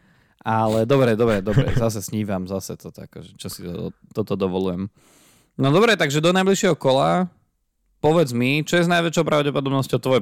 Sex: male